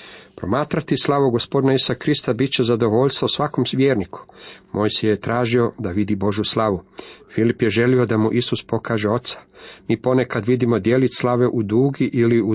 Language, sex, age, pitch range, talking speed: Croatian, male, 40-59, 105-125 Hz, 165 wpm